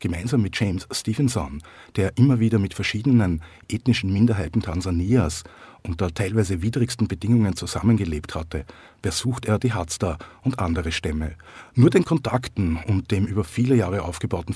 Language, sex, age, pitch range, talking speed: German, male, 50-69, 90-115 Hz, 140 wpm